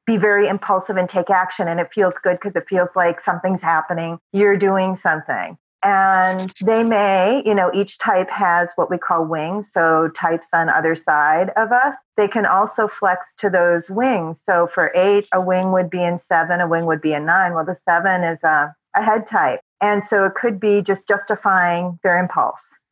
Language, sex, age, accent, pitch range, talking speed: English, female, 40-59, American, 170-200 Hz, 200 wpm